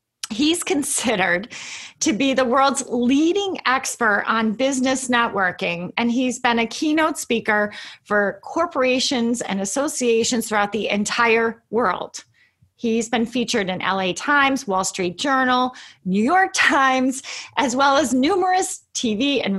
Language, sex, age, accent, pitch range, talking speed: English, female, 30-49, American, 205-275 Hz, 130 wpm